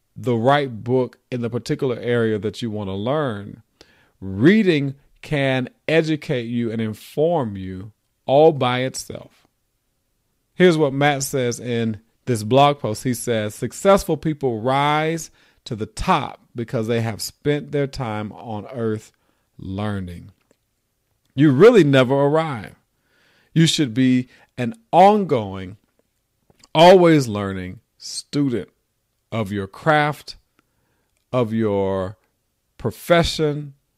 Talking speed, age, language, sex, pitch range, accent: 115 wpm, 40-59, English, male, 110-145 Hz, American